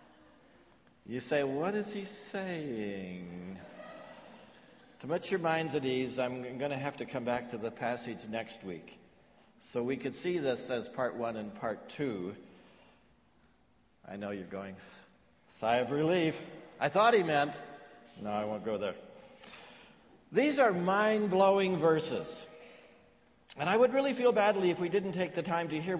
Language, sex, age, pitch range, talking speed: English, male, 60-79, 135-200 Hz, 160 wpm